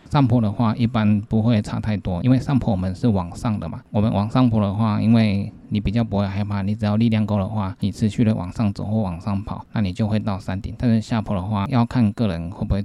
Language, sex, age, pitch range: Chinese, male, 20-39, 95-115 Hz